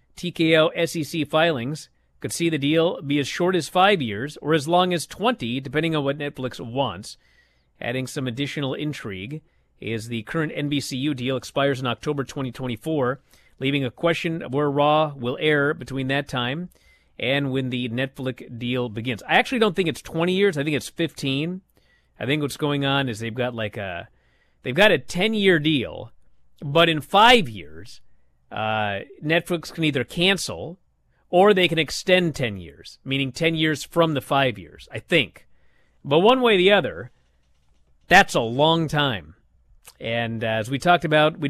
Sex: male